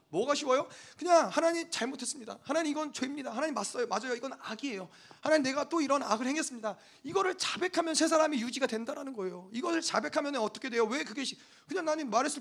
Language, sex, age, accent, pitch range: Korean, male, 30-49, native, 235-300 Hz